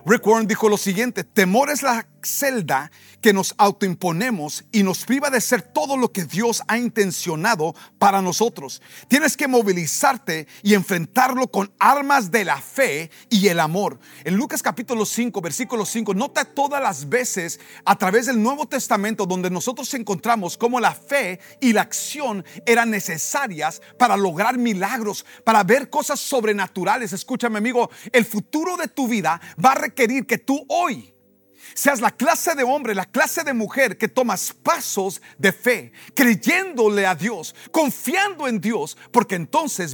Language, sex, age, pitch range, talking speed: Spanish, male, 40-59, 195-255 Hz, 160 wpm